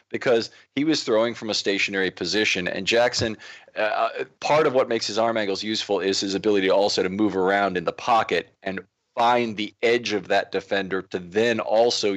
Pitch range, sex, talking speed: 95-115 Hz, male, 190 wpm